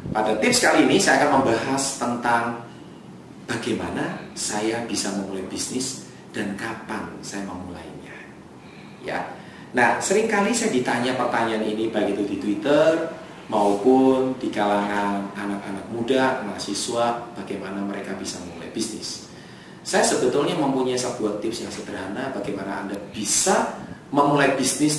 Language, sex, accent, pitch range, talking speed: Indonesian, male, native, 100-135 Hz, 120 wpm